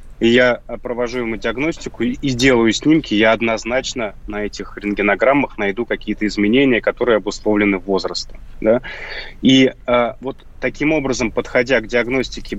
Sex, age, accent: male, 30-49, native